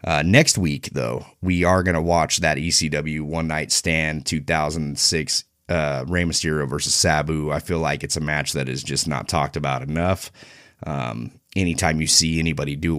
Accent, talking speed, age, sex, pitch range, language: American, 175 wpm, 30-49, male, 75-95 Hz, English